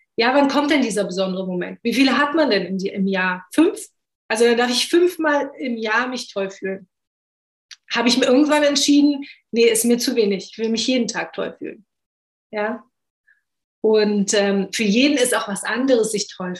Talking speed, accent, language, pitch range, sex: 190 wpm, German, German, 205-265 Hz, female